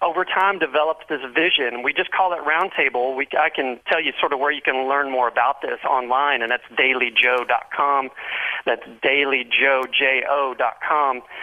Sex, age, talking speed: male, 40-59, 150 wpm